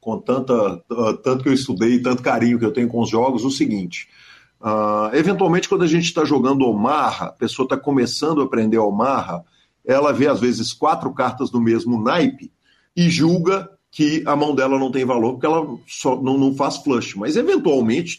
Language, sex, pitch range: Portuguese, male, 110-140 Hz